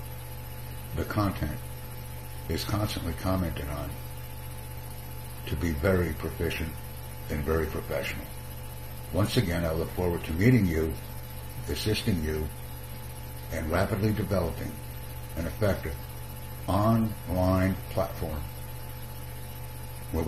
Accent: American